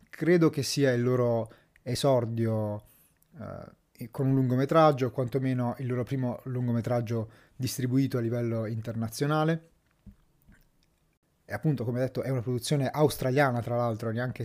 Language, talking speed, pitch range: Italian, 125 wpm, 115-140 Hz